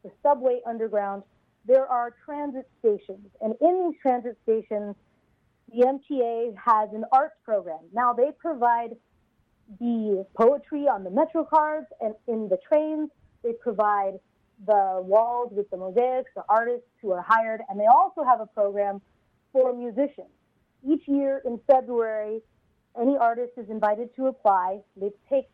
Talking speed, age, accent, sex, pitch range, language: 150 wpm, 30-49, American, female, 220-270 Hz, English